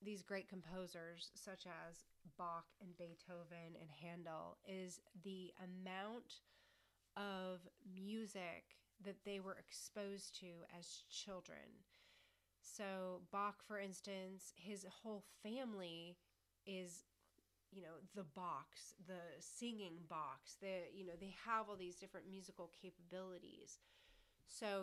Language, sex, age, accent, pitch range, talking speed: English, female, 30-49, American, 170-200 Hz, 115 wpm